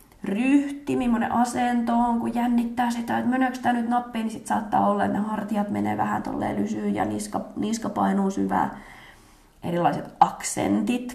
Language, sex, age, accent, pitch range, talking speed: Finnish, female, 20-39, native, 175-245 Hz, 155 wpm